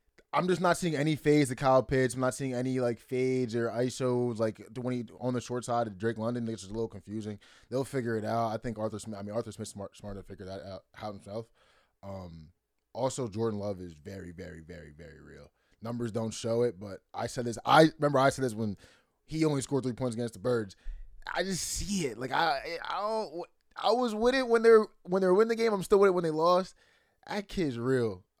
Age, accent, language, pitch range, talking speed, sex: 20-39, American, English, 105-145 Hz, 240 wpm, male